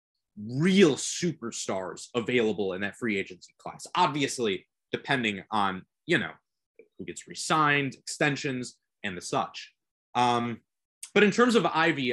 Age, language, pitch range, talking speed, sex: 20-39, English, 125-180 Hz, 130 wpm, male